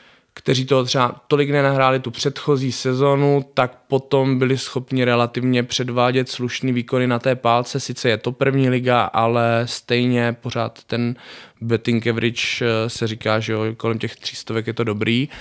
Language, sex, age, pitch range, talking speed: Czech, male, 20-39, 110-130 Hz, 160 wpm